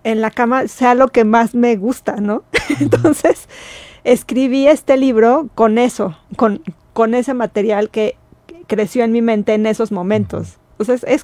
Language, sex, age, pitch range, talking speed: Spanish, female, 40-59, 215-250 Hz, 155 wpm